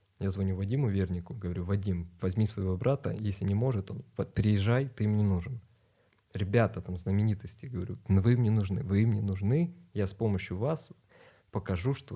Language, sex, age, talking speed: Russian, male, 20-39, 160 wpm